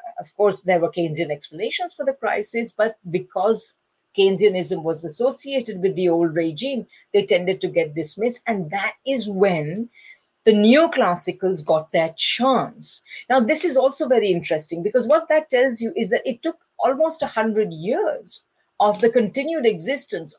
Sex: female